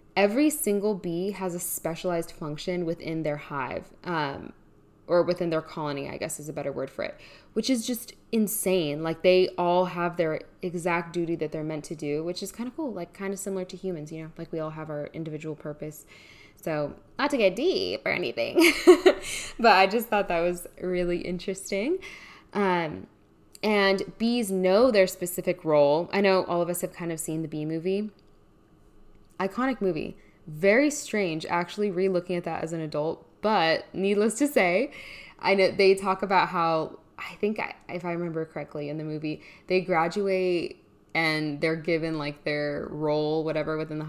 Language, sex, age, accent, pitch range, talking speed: English, female, 10-29, American, 155-195 Hz, 185 wpm